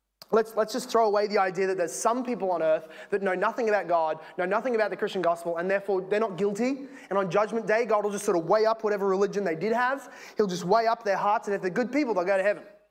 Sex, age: male, 20-39